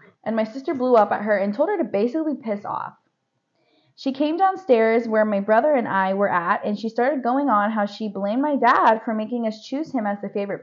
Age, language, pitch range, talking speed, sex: 20-39, English, 195-255 Hz, 235 wpm, female